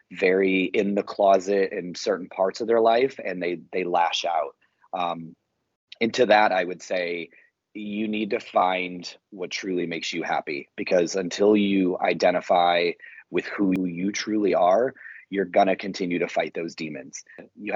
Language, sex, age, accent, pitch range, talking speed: English, male, 30-49, American, 90-125 Hz, 160 wpm